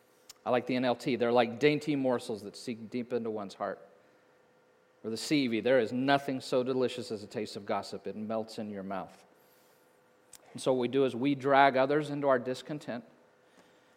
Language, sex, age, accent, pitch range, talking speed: English, male, 40-59, American, 120-150 Hz, 190 wpm